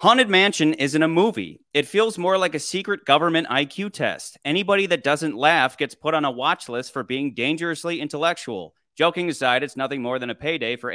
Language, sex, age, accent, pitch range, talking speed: English, male, 30-49, American, 130-170 Hz, 205 wpm